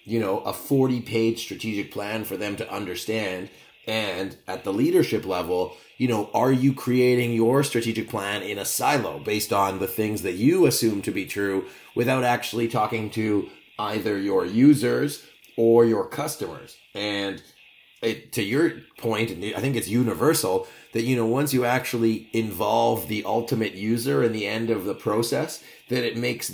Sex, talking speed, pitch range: male, 170 wpm, 105-120 Hz